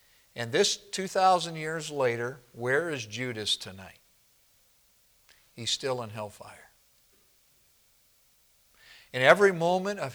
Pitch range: 125-165 Hz